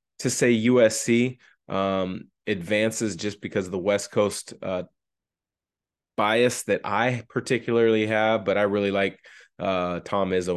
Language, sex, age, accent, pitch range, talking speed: English, male, 30-49, American, 95-120 Hz, 135 wpm